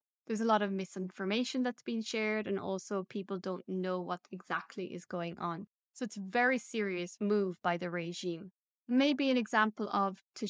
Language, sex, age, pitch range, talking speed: English, female, 10-29, 185-225 Hz, 185 wpm